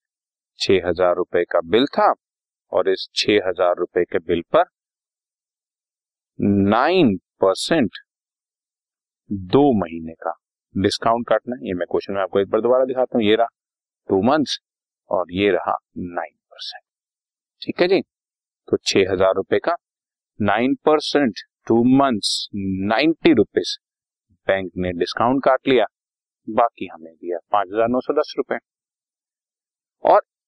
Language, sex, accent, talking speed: Hindi, male, native, 130 wpm